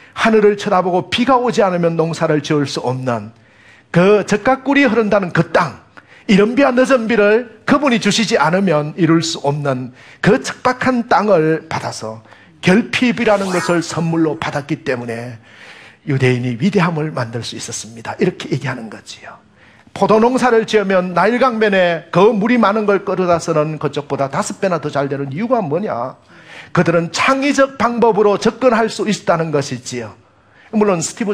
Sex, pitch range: male, 130-205 Hz